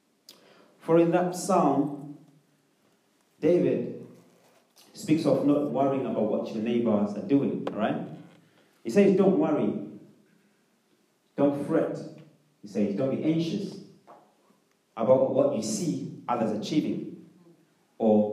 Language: English